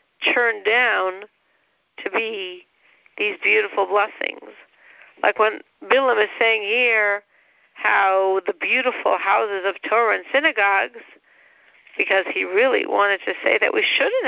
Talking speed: 125 wpm